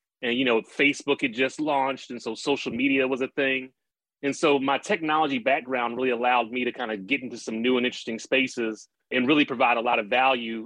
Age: 30-49